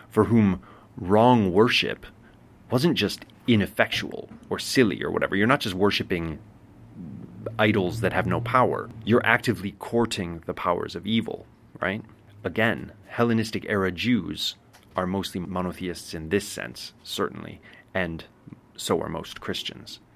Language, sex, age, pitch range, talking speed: English, male, 30-49, 90-115 Hz, 130 wpm